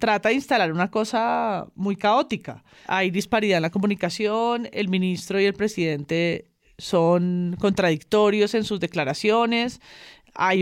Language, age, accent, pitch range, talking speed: Spanish, 30-49, Colombian, 180-220 Hz, 130 wpm